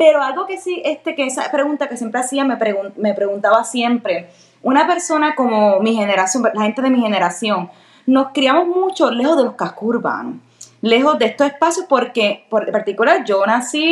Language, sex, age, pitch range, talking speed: English, female, 20-39, 205-285 Hz, 190 wpm